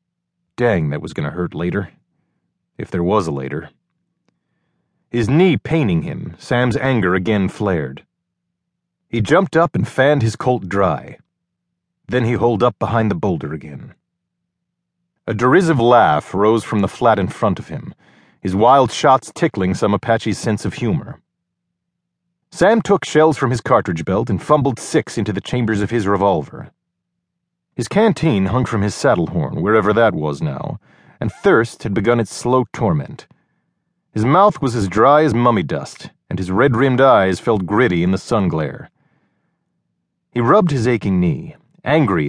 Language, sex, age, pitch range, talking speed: English, male, 40-59, 100-155 Hz, 160 wpm